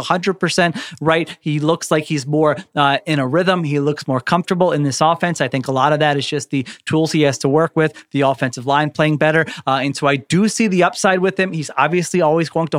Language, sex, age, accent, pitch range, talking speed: English, male, 30-49, American, 140-180 Hz, 250 wpm